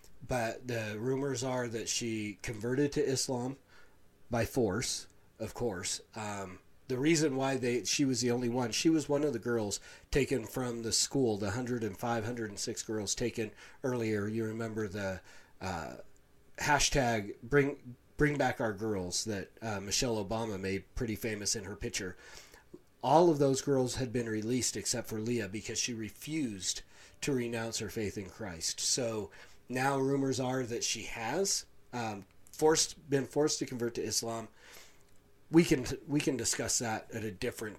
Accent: American